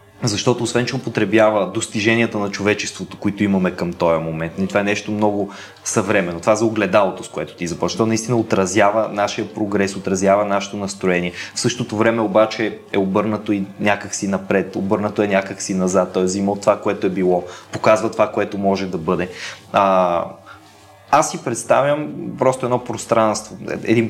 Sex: male